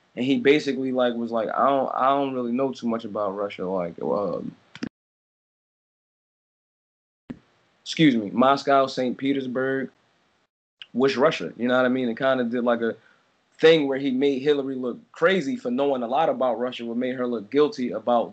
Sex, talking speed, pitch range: male, 180 wpm, 120-140 Hz